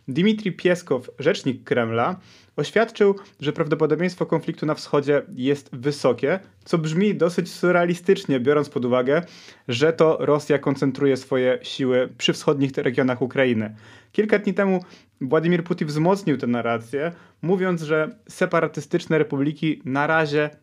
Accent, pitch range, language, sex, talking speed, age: native, 135-165 Hz, Polish, male, 125 wpm, 30-49